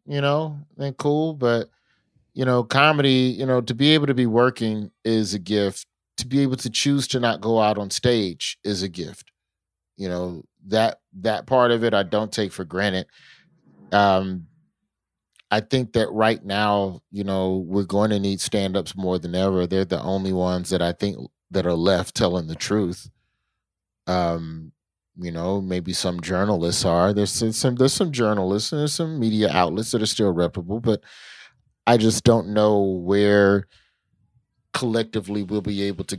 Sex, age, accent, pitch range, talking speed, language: male, 30-49, American, 90-115 Hz, 175 wpm, English